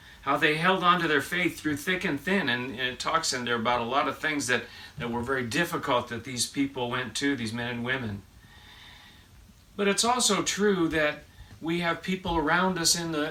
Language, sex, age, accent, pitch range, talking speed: English, male, 40-59, American, 110-150 Hz, 210 wpm